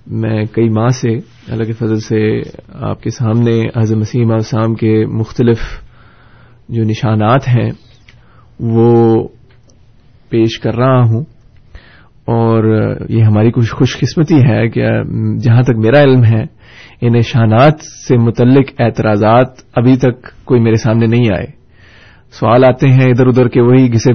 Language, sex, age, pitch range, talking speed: Urdu, male, 30-49, 115-125 Hz, 140 wpm